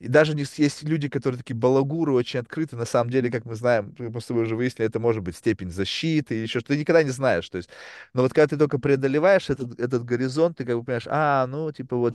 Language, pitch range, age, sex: Russian, 120-150 Hz, 30-49, male